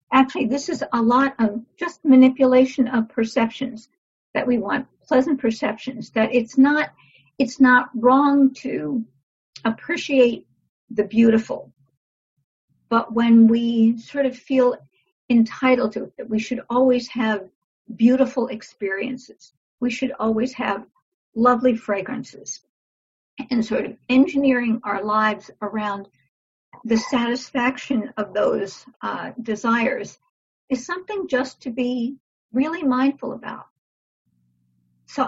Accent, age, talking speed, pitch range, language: American, 50-69, 115 wpm, 220-260 Hz, English